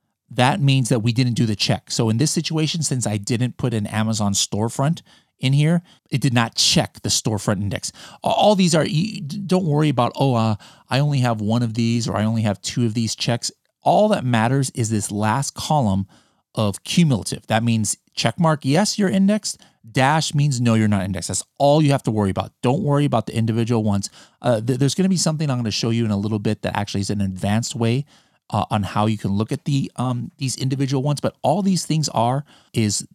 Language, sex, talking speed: English, male, 225 wpm